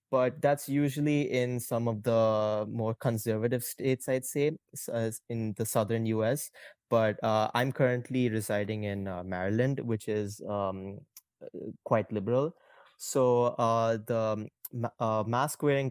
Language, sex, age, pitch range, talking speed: English, male, 20-39, 105-125 Hz, 130 wpm